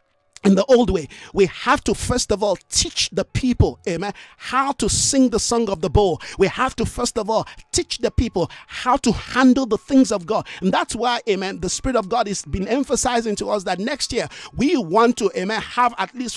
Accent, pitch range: Nigerian, 190-245 Hz